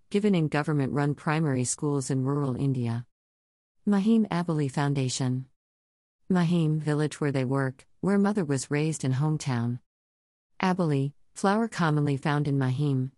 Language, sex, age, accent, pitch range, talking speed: English, female, 50-69, American, 125-160 Hz, 130 wpm